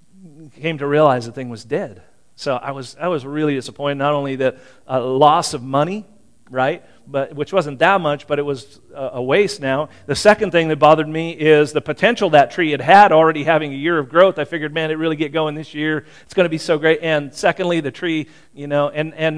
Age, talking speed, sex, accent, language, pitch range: 40-59, 235 wpm, male, American, English, 140-180 Hz